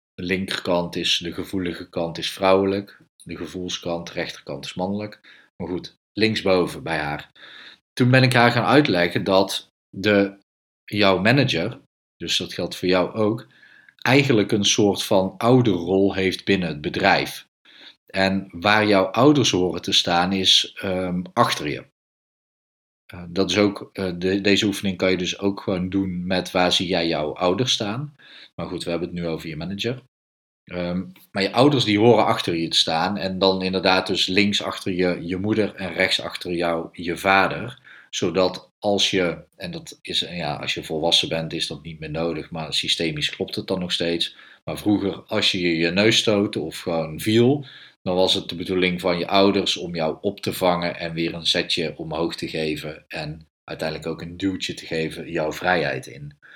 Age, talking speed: 40-59, 185 wpm